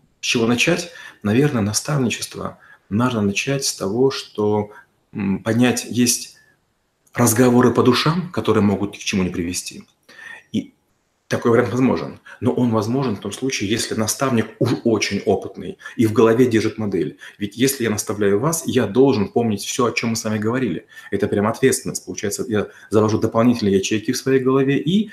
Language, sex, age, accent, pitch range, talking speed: Russian, male, 30-49, native, 105-130 Hz, 160 wpm